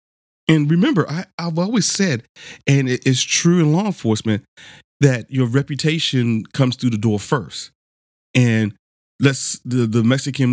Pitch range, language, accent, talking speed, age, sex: 105-130 Hz, English, American, 140 wpm, 40-59, male